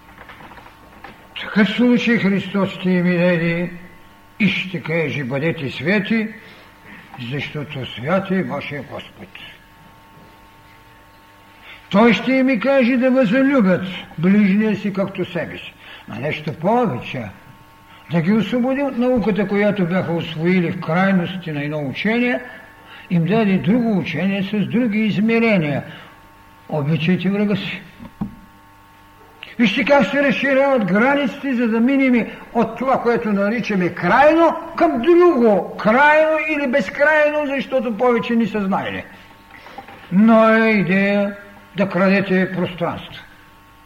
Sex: male